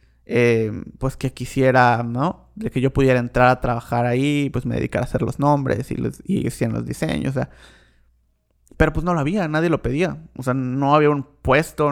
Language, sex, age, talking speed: Spanish, male, 30-49, 210 wpm